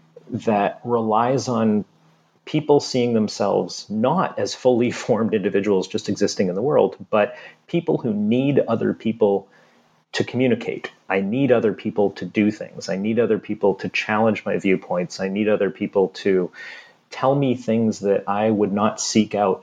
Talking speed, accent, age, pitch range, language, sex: 160 wpm, American, 30-49, 100-125 Hz, English, male